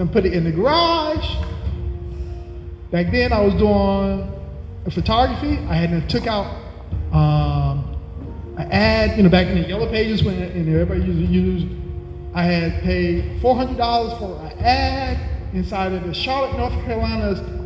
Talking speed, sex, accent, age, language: 155 wpm, male, American, 30-49, English